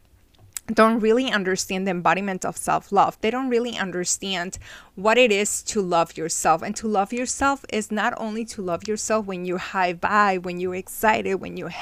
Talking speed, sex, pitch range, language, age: 185 wpm, female, 180-215 Hz, English, 20-39